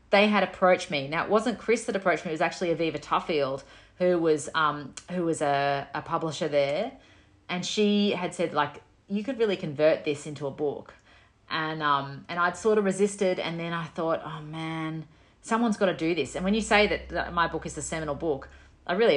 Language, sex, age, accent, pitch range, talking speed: English, female, 30-49, Australian, 150-190 Hz, 215 wpm